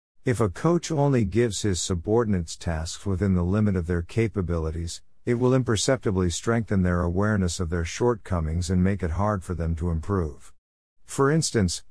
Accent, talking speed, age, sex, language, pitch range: American, 165 wpm, 50-69, male, English, 90-115 Hz